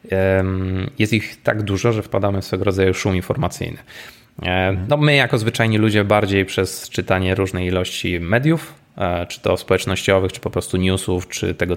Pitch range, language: 90-110 Hz, Polish